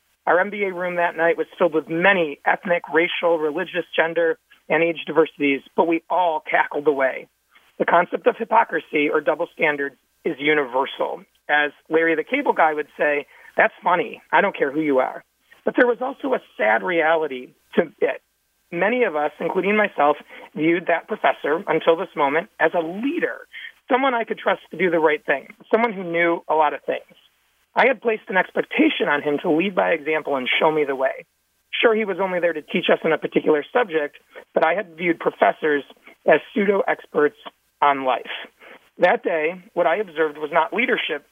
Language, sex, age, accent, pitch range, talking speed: English, male, 40-59, American, 150-190 Hz, 185 wpm